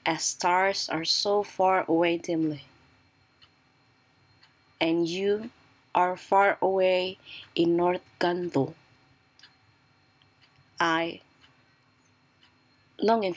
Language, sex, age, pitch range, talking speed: Indonesian, female, 20-39, 130-180 Hz, 75 wpm